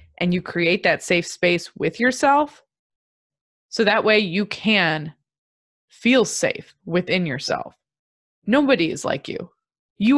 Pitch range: 155-205 Hz